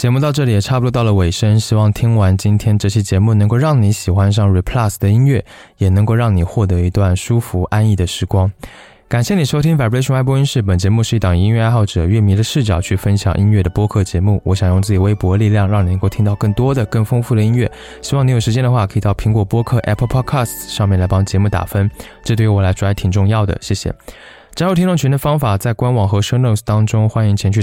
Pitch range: 100-120 Hz